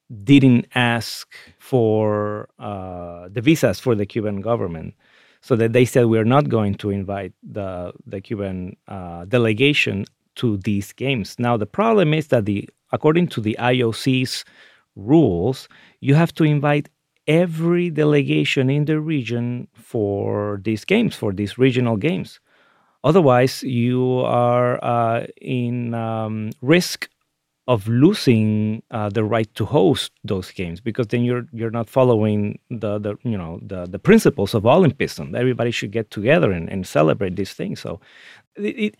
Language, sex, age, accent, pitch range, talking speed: English, male, 30-49, Mexican, 105-135 Hz, 150 wpm